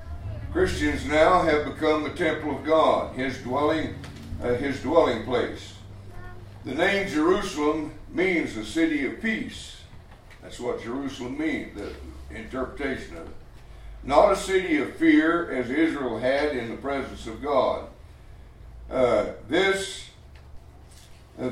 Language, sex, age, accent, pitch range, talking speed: English, male, 60-79, American, 115-160 Hz, 130 wpm